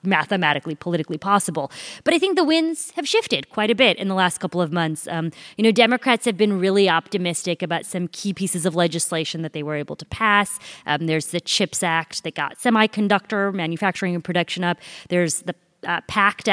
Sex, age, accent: female, 20-39, American